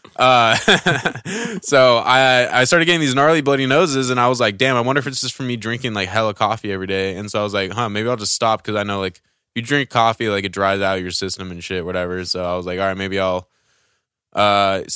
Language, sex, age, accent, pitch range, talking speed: English, male, 20-39, American, 100-125 Hz, 255 wpm